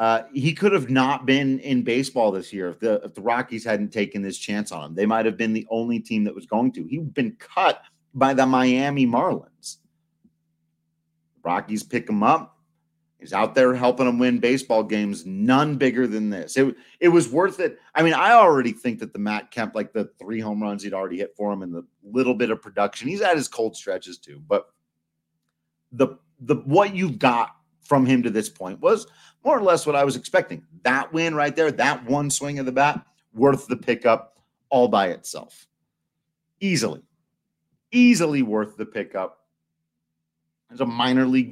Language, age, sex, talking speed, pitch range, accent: English, 30-49, male, 195 wpm, 80-135 Hz, American